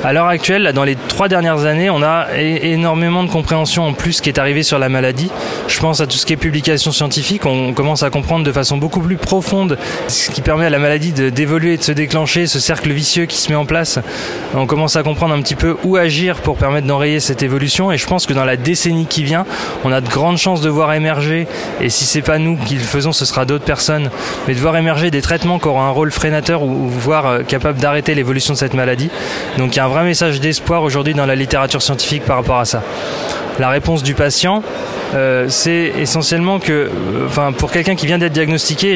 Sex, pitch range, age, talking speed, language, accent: male, 140-165 Hz, 20-39, 235 wpm, French, French